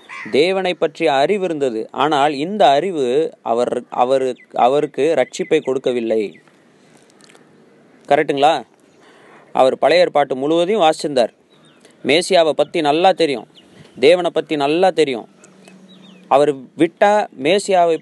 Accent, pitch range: native, 125-175 Hz